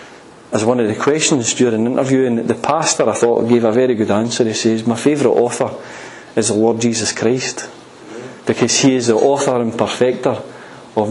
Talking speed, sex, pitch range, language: 185 wpm, male, 120-150 Hz, English